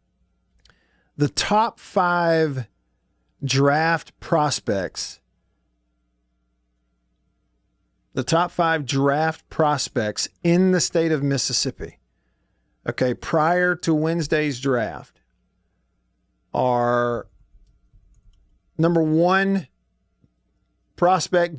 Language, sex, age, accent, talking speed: English, male, 50-69, American, 65 wpm